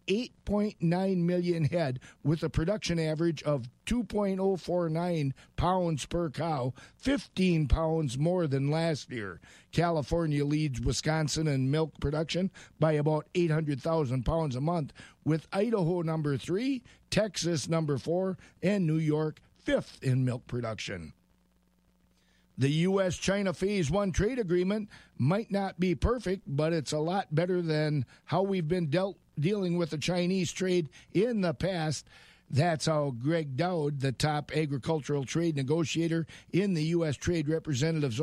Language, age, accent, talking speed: English, 50-69, American, 135 wpm